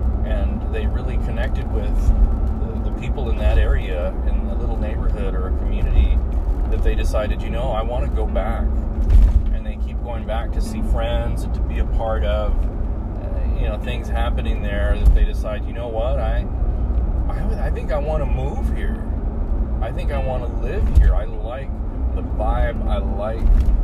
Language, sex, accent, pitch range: English, male, American, 70-75 Hz